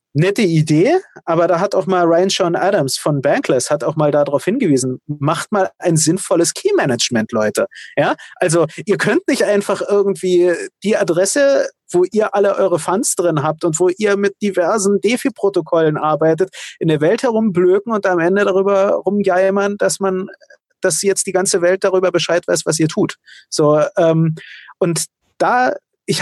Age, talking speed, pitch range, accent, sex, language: 30-49, 165 wpm, 155-190 Hz, German, male, German